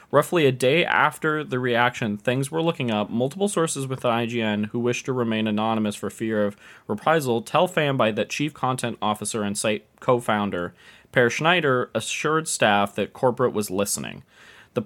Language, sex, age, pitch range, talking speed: English, male, 20-39, 110-135 Hz, 175 wpm